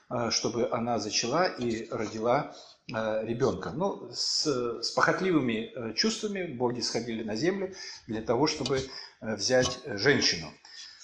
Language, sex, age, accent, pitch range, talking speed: Russian, male, 50-69, native, 115-160 Hz, 110 wpm